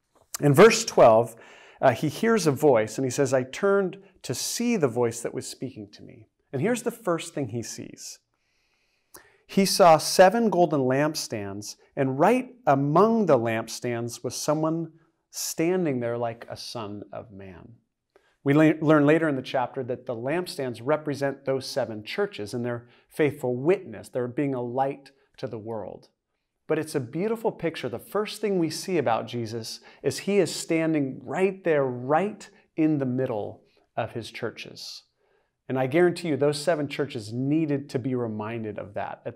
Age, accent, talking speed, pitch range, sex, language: 40-59, American, 170 wpm, 120-160 Hz, male, English